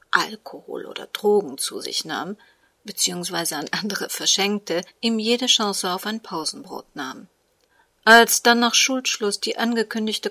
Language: German